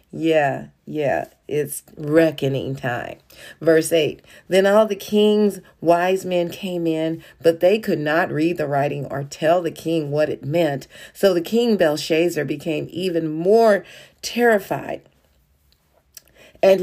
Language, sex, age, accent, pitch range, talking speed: English, female, 40-59, American, 150-190 Hz, 135 wpm